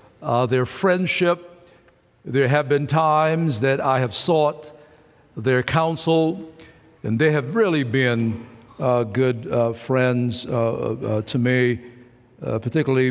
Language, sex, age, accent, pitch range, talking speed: English, male, 60-79, American, 120-150 Hz, 130 wpm